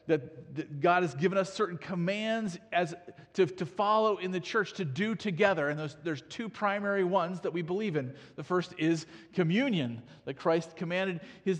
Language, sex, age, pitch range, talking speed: English, male, 40-59, 150-185 Hz, 180 wpm